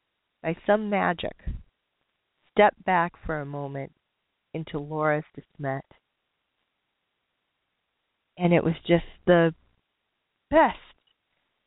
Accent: American